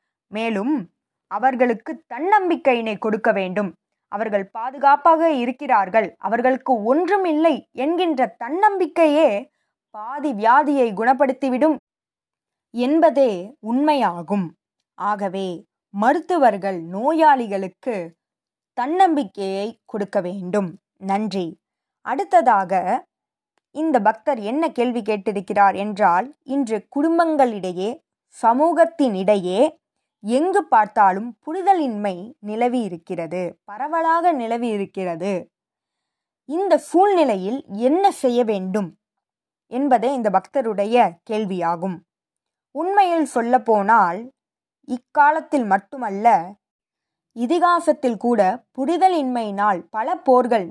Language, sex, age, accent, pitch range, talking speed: Tamil, female, 20-39, native, 200-295 Hz, 70 wpm